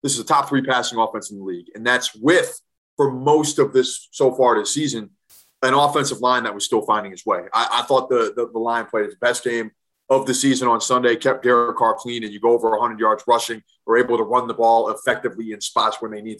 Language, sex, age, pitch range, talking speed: English, male, 20-39, 115-155 Hz, 255 wpm